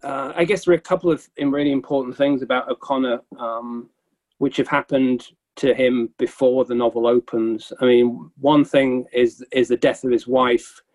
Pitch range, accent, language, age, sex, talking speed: 120-145 Hz, British, English, 40-59, male, 185 wpm